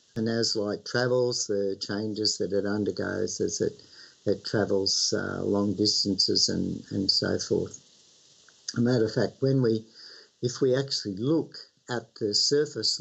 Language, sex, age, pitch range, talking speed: English, male, 60-79, 105-125 Hz, 155 wpm